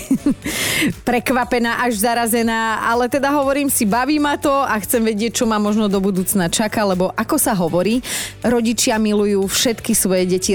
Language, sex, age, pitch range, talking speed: Slovak, female, 30-49, 185-240 Hz, 160 wpm